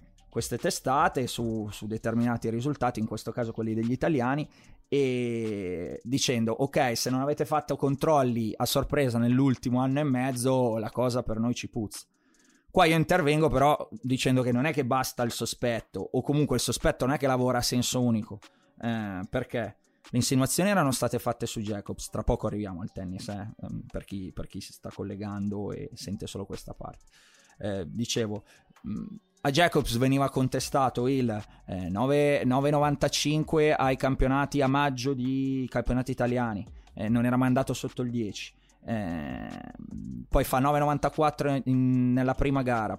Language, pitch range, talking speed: Italian, 110-140 Hz, 155 wpm